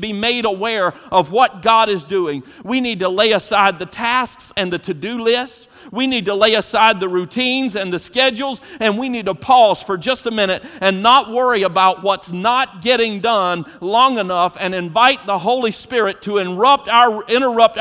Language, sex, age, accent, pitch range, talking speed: English, male, 50-69, American, 160-215 Hz, 190 wpm